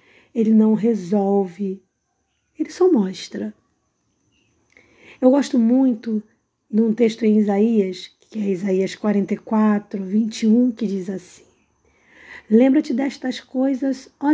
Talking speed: 110 wpm